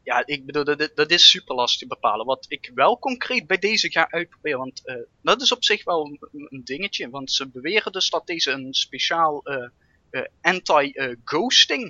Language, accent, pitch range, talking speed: Dutch, Dutch, 140-190 Hz, 180 wpm